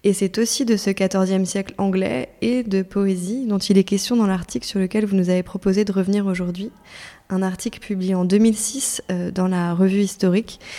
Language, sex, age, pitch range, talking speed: French, female, 20-39, 185-210 Hz, 195 wpm